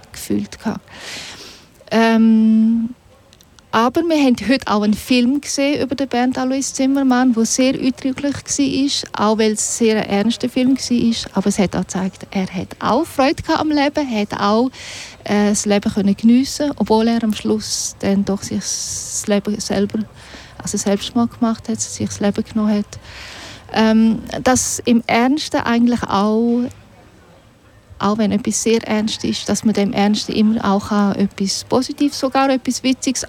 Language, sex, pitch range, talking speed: German, female, 205-250 Hz, 155 wpm